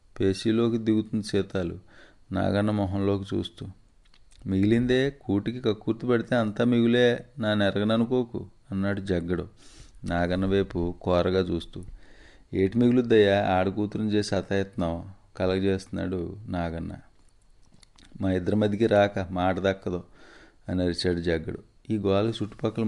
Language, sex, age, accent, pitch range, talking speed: Telugu, male, 30-49, native, 90-105 Hz, 100 wpm